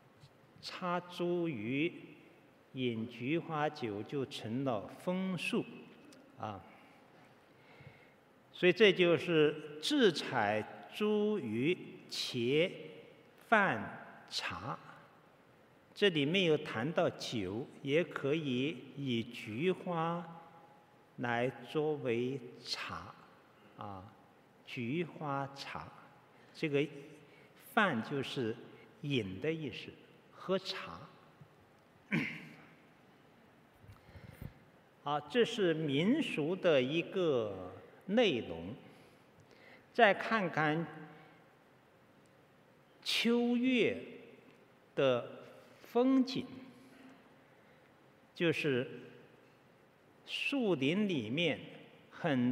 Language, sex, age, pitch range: Chinese, male, 50-69, 135-185 Hz